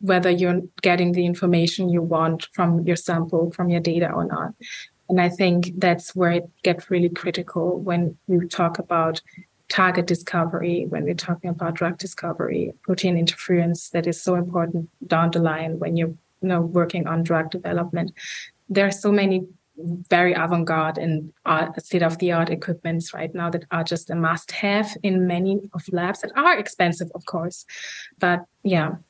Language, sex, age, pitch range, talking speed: English, female, 20-39, 170-185 Hz, 165 wpm